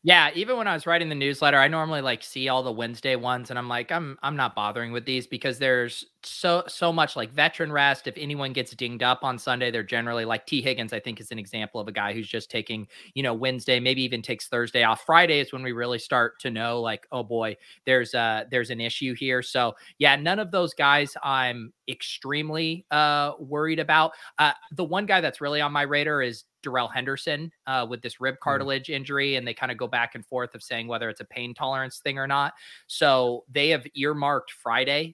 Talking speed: 225 wpm